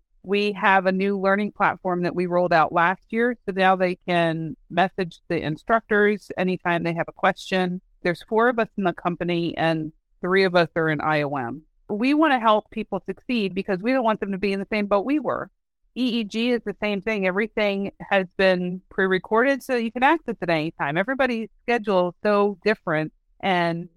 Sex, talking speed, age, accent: female, 200 wpm, 40-59, American